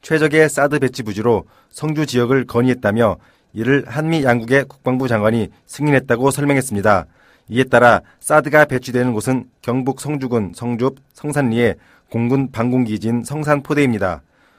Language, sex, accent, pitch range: Korean, male, native, 115-140 Hz